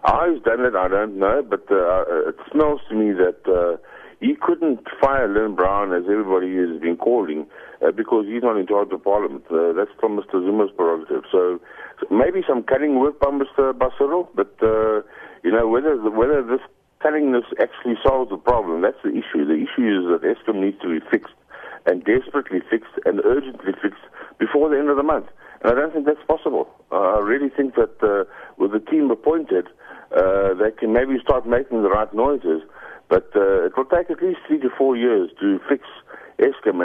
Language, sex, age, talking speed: English, male, 60-79, 200 wpm